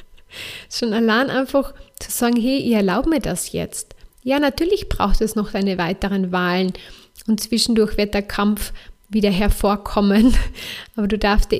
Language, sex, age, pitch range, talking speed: German, female, 30-49, 200-235 Hz, 155 wpm